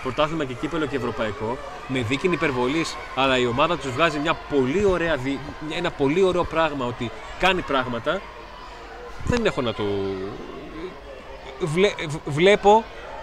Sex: male